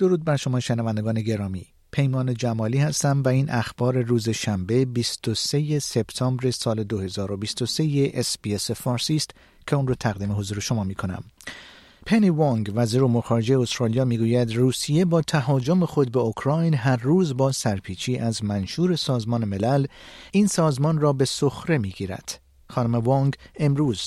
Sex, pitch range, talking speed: male, 110-150 Hz, 145 wpm